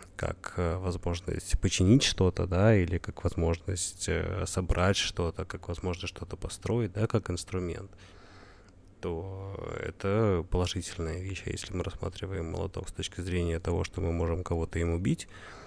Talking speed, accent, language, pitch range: 135 wpm, native, Russian, 90-100 Hz